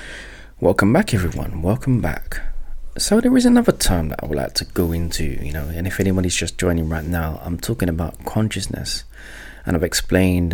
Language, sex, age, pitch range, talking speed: English, male, 20-39, 80-100 Hz, 190 wpm